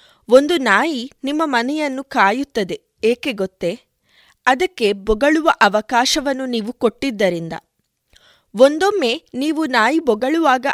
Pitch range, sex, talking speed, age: 205-280 Hz, female, 90 wpm, 20-39